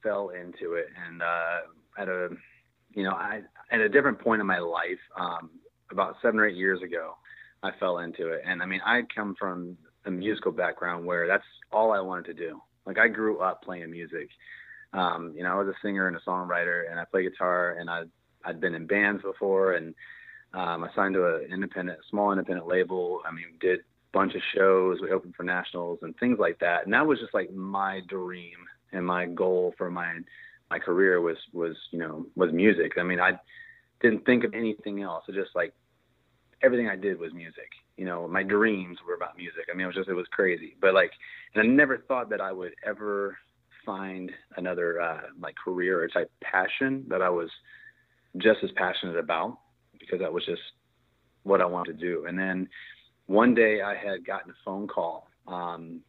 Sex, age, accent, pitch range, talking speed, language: male, 30-49, American, 90-105 Hz, 210 wpm, English